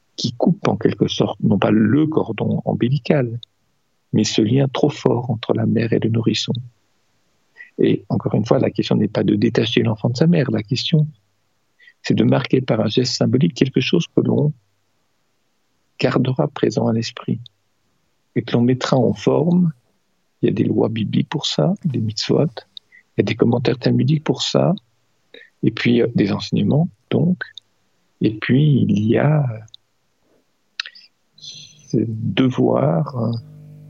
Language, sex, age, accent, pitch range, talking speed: French, male, 50-69, French, 115-150 Hz, 155 wpm